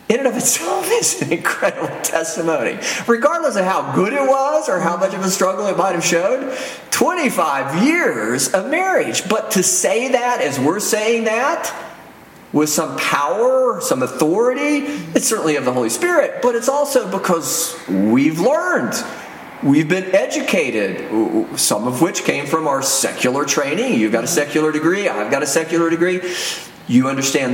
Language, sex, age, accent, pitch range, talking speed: English, male, 40-59, American, 160-235 Hz, 165 wpm